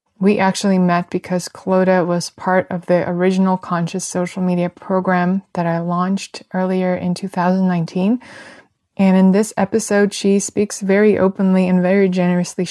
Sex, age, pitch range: female, 20-39, 180-195 Hz